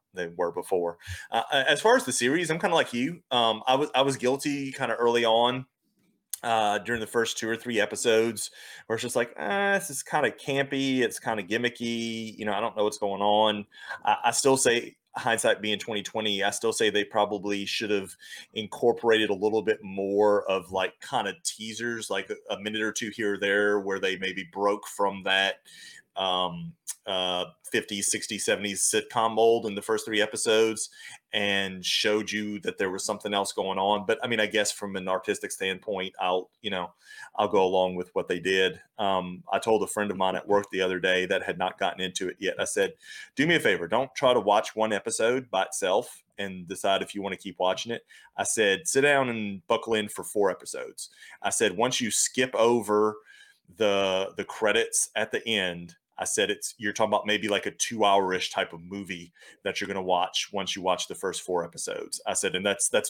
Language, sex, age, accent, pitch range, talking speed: English, male, 30-49, American, 100-125 Hz, 220 wpm